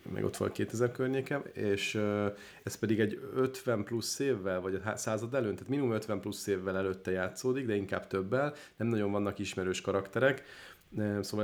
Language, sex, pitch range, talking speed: Hungarian, male, 95-110 Hz, 175 wpm